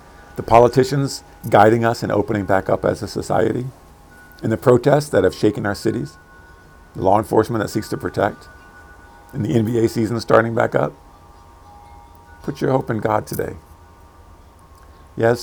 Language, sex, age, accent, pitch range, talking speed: English, male, 50-69, American, 90-115 Hz, 155 wpm